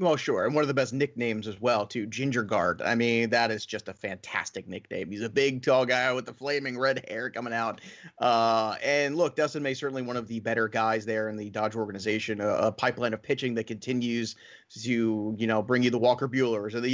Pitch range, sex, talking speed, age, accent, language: 120-150 Hz, male, 230 wpm, 30-49, American, English